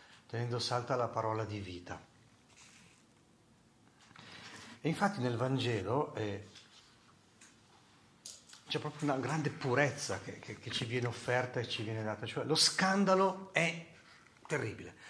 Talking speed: 120 wpm